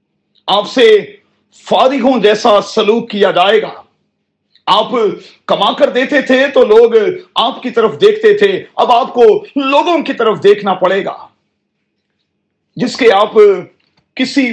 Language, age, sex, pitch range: Urdu, 40-59, male, 195-275 Hz